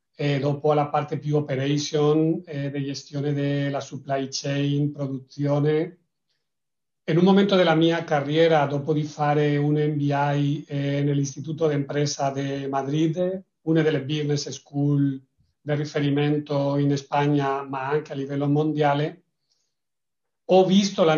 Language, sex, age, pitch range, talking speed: Italian, male, 40-59, 145-160 Hz, 130 wpm